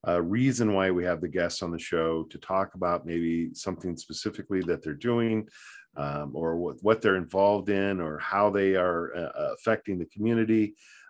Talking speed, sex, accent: 190 wpm, male, American